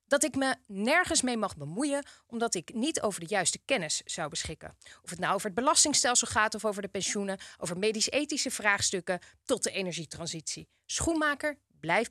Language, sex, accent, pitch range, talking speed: Dutch, female, Dutch, 180-260 Hz, 175 wpm